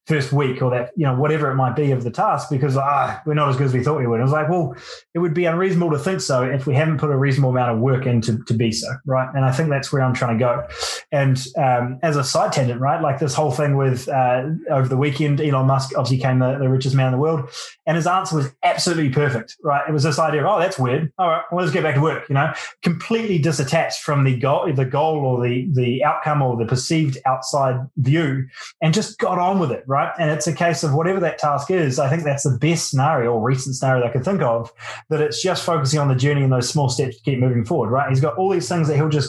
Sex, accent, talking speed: male, Australian, 275 wpm